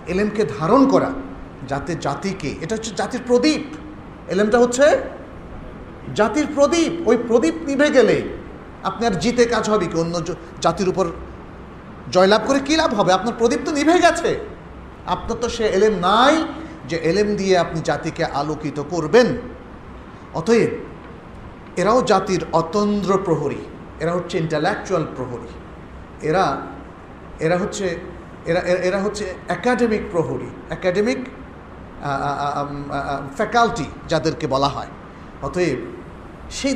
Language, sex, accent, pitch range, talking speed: Bengali, male, native, 145-225 Hz, 120 wpm